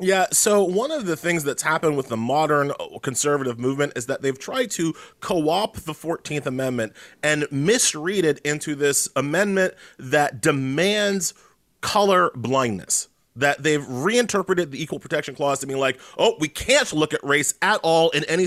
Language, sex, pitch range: English, male, 130-170 Hz